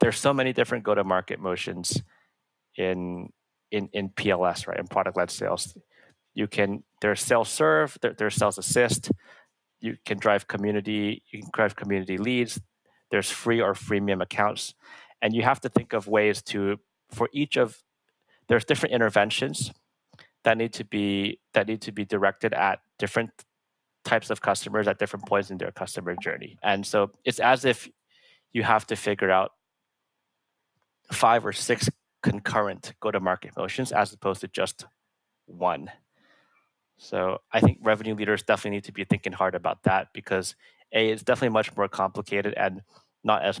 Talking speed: 160 wpm